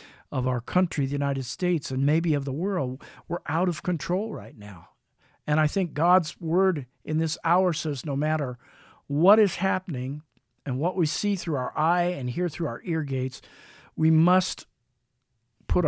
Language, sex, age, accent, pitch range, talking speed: English, male, 50-69, American, 135-165 Hz, 180 wpm